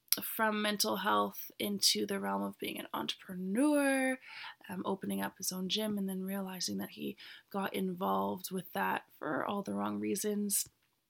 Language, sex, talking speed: English, female, 160 wpm